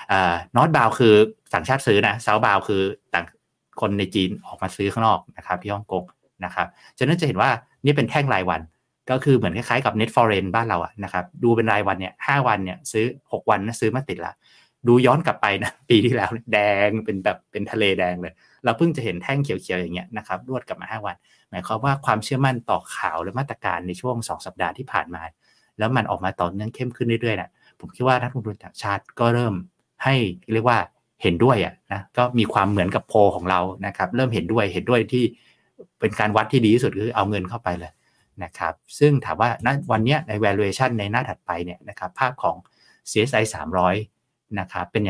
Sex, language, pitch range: male, Thai, 95-125 Hz